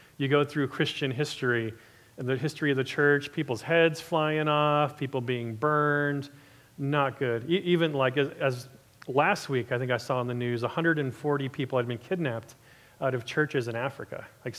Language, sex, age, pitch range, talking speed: English, male, 40-59, 125-160 Hz, 175 wpm